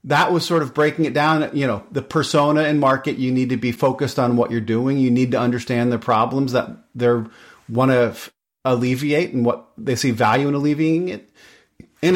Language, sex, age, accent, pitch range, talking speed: English, male, 40-59, American, 125-150 Hz, 205 wpm